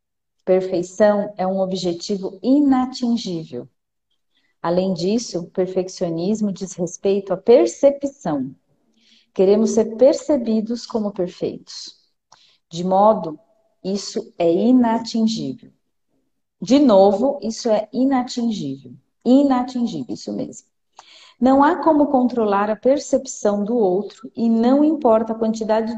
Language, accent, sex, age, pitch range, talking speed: Portuguese, Brazilian, female, 40-59, 195-255 Hz, 100 wpm